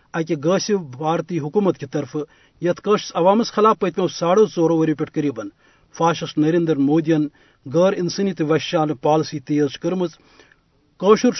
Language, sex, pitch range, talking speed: Urdu, male, 155-195 Hz, 130 wpm